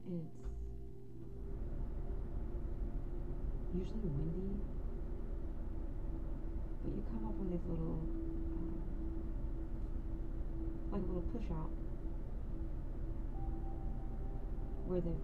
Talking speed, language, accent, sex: 70 wpm, English, American, female